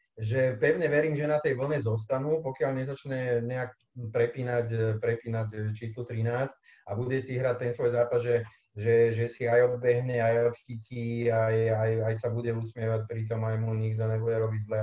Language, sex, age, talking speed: Czech, male, 30-49, 175 wpm